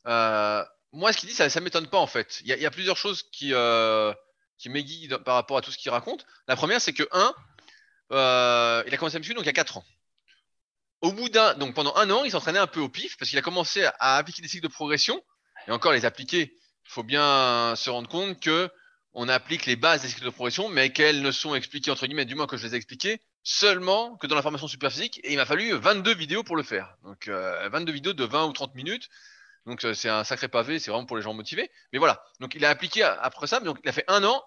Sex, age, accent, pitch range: male, 20-39, French, 125-185 Hz